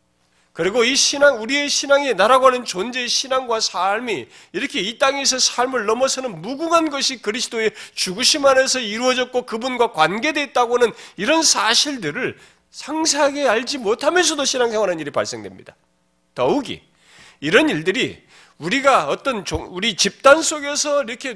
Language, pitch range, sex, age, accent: Korean, 170-275 Hz, male, 40-59, native